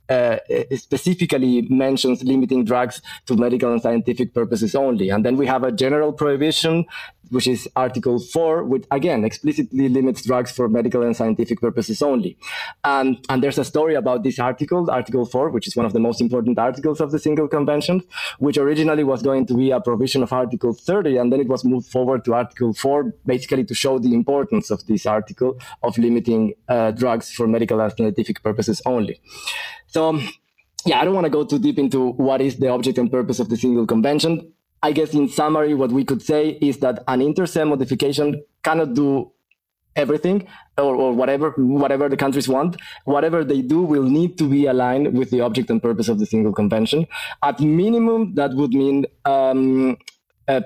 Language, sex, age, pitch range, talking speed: English, male, 20-39, 125-150 Hz, 190 wpm